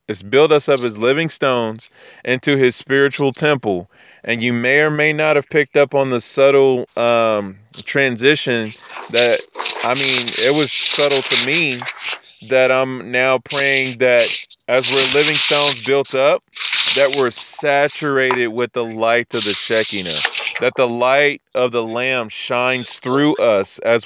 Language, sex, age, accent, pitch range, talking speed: English, male, 20-39, American, 115-140 Hz, 155 wpm